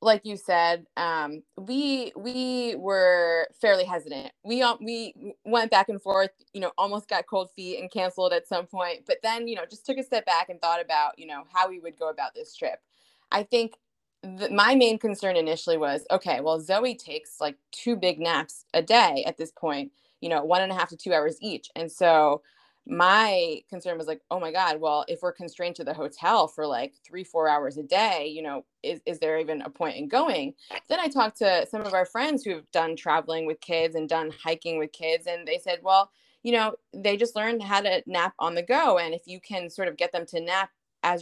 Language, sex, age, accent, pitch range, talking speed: English, female, 20-39, American, 165-225 Hz, 225 wpm